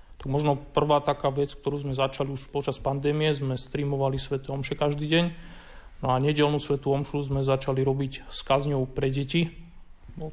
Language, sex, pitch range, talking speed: Slovak, male, 135-145 Hz, 170 wpm